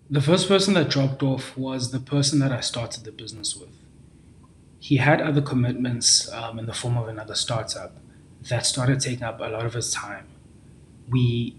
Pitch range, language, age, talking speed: 110-135 Hz, English, 20-39, 185 wpm